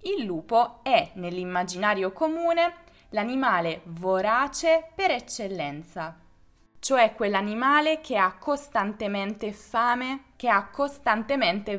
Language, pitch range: Italian, 185-275 Hz